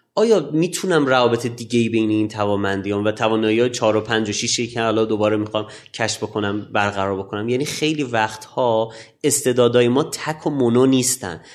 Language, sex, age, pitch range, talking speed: Persian, male, 30-49, 105-145 Hz, 170 wpm